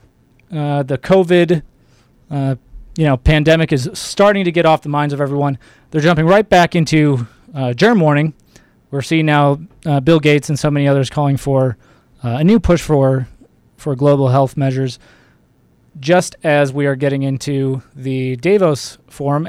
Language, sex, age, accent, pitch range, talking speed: English, male, 20-39, American, 135-170 Hz, 165 wpm